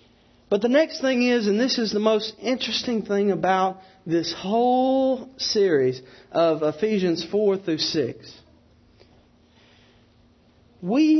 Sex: male